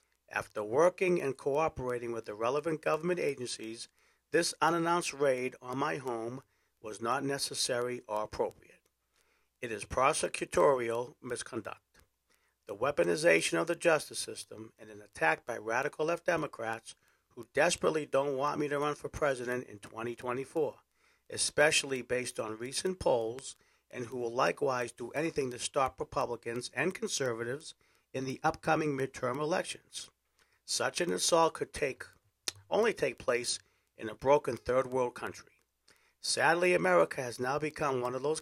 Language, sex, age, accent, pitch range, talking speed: English, male, 50-69, American, 120-165 Hz, 140 wpm